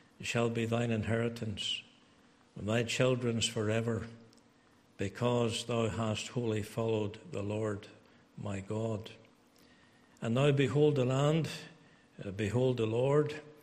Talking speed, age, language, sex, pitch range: 110 wpm, 60-79, English, male, 110-130 Hz